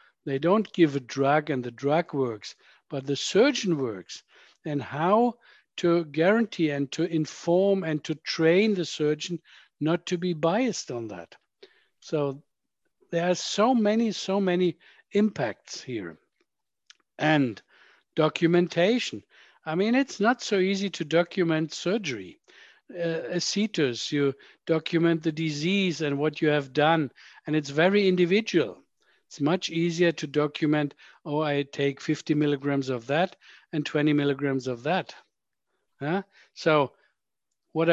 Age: 60-79